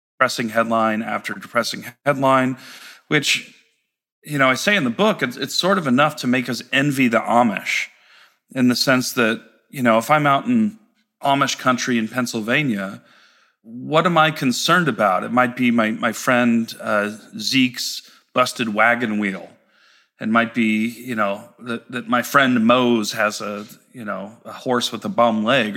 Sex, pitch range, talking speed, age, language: male, 115-145 Hz, 170 wpm, 40-59, English